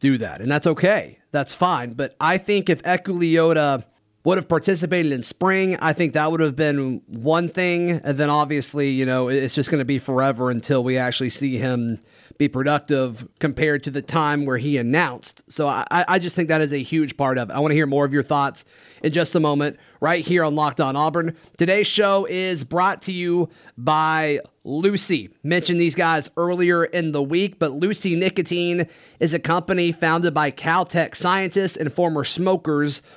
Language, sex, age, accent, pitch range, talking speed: English, male, 30-49, American, 140-175 Hz, 195 wpm